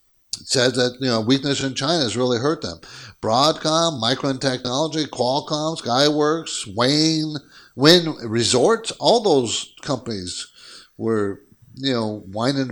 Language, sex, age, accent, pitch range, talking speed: English, male, 60-79, American, 120-175 Hz, 125 wpm